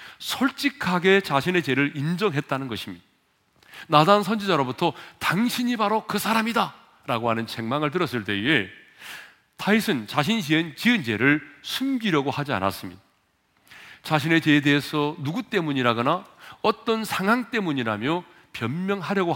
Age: 40-59